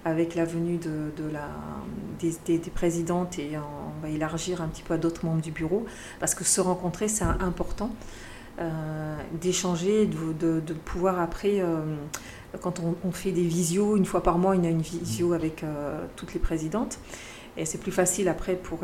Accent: French